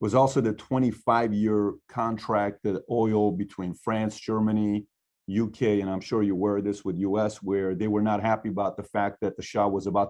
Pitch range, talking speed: 100-120 Hz, 195 wpm